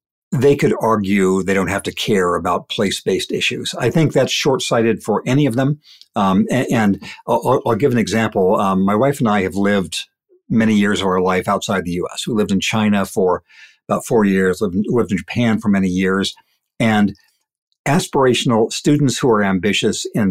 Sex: male